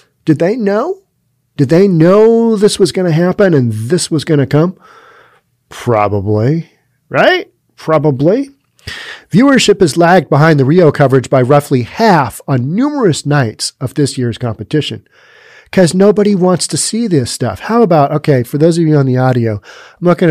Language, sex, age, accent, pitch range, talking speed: English, male, 40-59, American, 130-170 Hz, 165 wpm